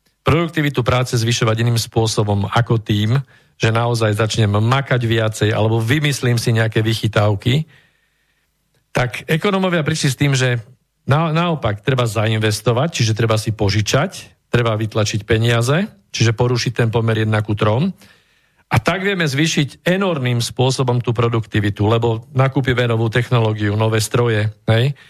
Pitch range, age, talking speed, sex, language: 115-150 Hz, 50-69, 130 wpm, male, Slovak